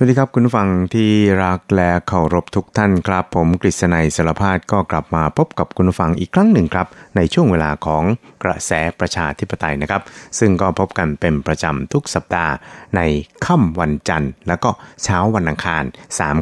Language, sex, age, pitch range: Thai, male, 60-79, 80-100 Hz